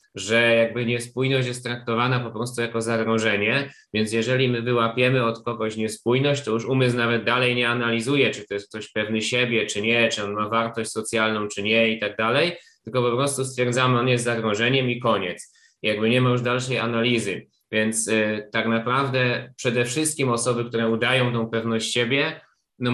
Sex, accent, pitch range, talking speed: male, native, 115-130 Hz, 180 wpm